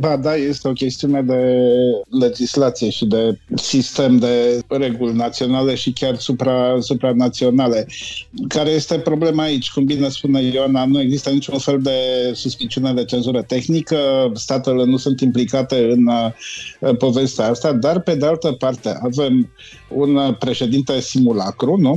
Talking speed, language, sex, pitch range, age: 140 wpm, Romanian, male, 120-140 Hz, 50-69